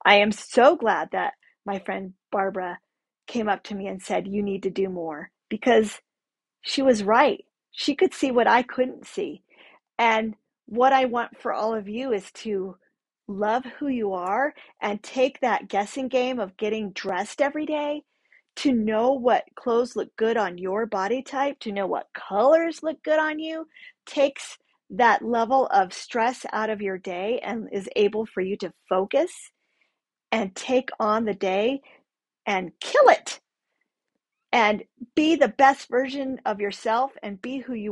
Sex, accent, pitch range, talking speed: female, American, 200-265 Hz, 170 wpm